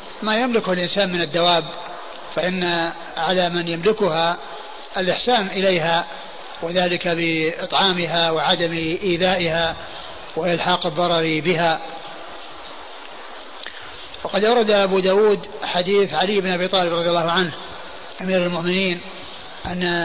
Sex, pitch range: male, 175-190 Hz